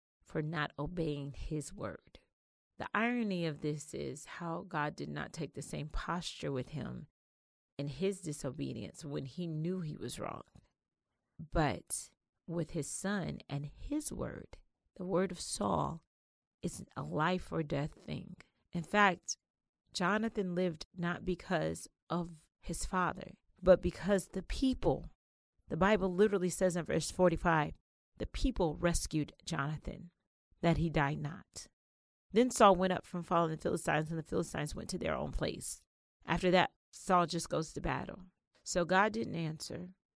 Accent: American